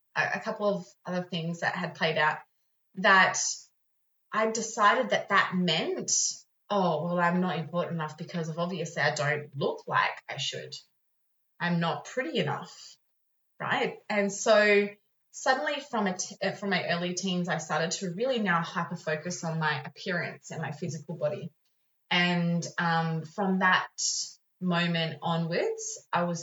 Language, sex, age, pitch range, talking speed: English, female, 20-39, 165-200 Hz, 150 wpm